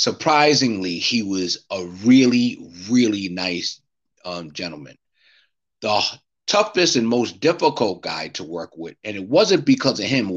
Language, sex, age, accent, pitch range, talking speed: English, male, 30-49, American, 90-115 Hz, 145 wpm